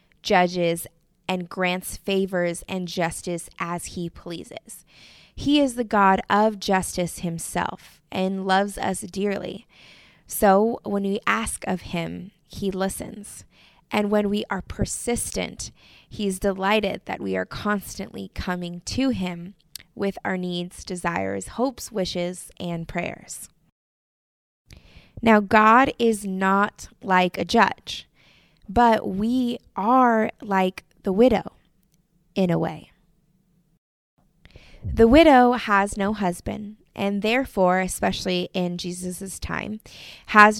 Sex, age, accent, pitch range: female, 20-39, American, 180-215 Hz